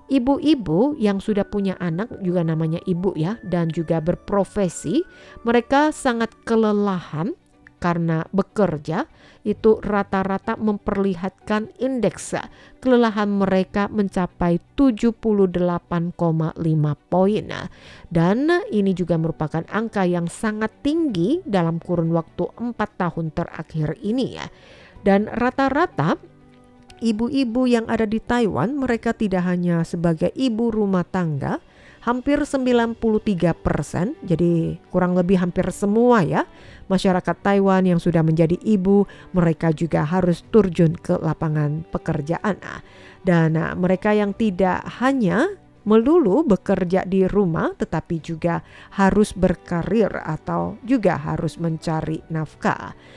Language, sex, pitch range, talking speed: Indonesian, female, 170-225 Hz, 110 wpm